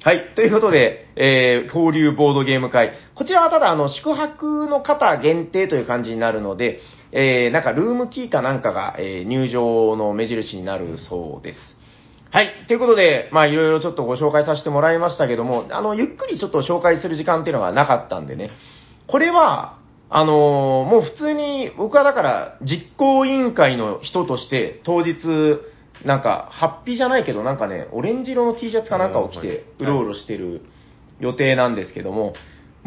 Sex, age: male, 40-59